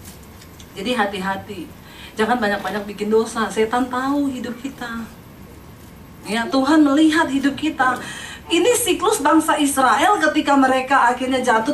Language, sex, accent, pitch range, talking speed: Indonesian, female, native, 195-275 Hz, 120 wpm